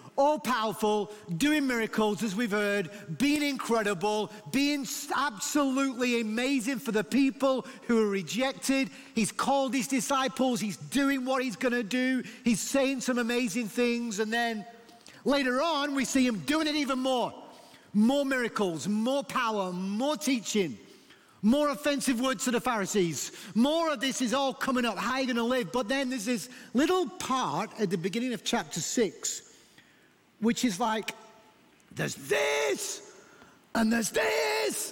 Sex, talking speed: male, 150 wpm